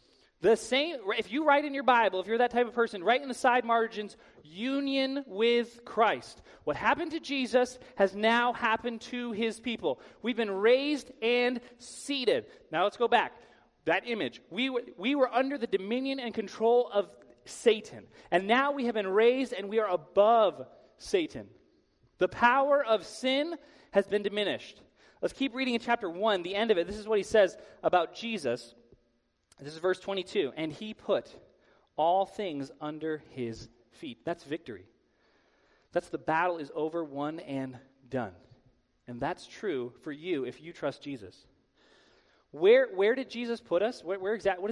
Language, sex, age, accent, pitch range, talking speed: English, male, 30-49, American, 170-245 Hz, 175 wpm